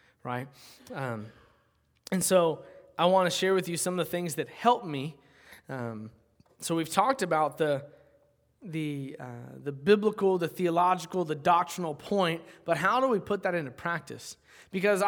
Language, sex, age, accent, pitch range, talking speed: English, male, 20-39, American, 145-195 Hz, 165 wpm